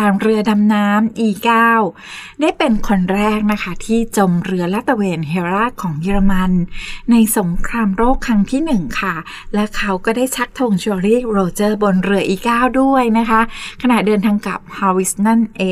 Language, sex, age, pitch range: Thai, female, 20-39, 185-230 Hz